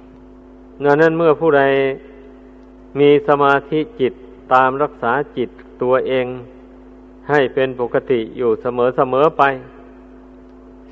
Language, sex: Thai, male